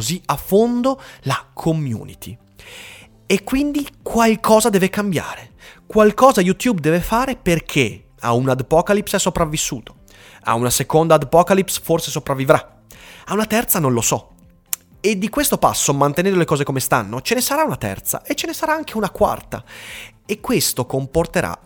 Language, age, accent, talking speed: Italian, 30-49, native, 150 wpm